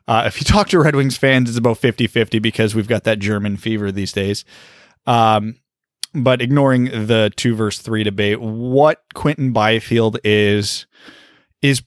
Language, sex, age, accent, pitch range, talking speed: English, male, 20-39, American, 110-135 Hz, 150 wpm